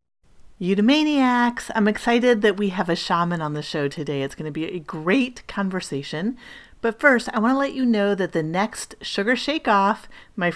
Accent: American